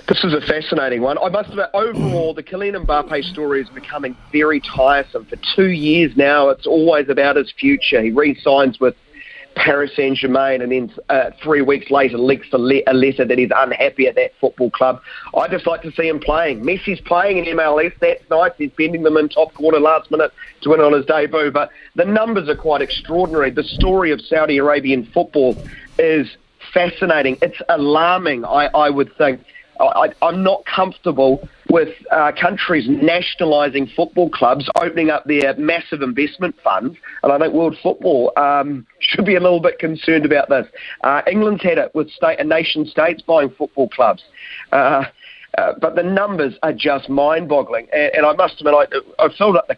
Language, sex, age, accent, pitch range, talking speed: English, male, 30-49, Australian, 145-185 Hz, 180 wpm